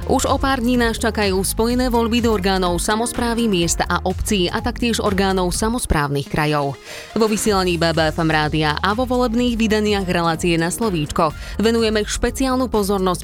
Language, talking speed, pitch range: Slovak, 150 wpm, 170-225 Hz